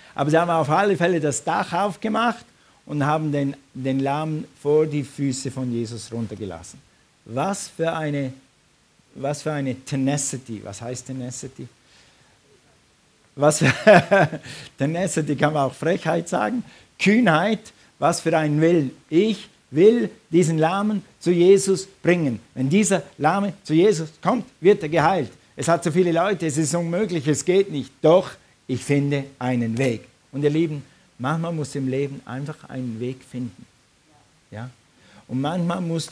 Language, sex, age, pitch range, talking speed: German, male, 50-69, 135-175 Hz, 150 wpm